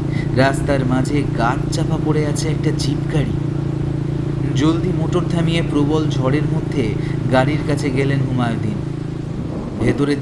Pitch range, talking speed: 115-145 Hz, 110 wpm